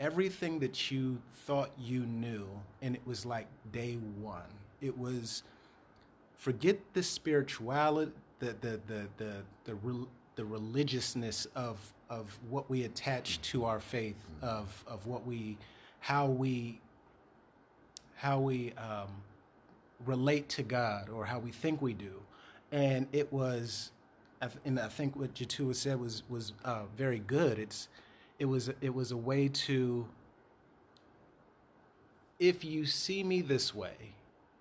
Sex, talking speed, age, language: male, 135 wpm, 30-49, English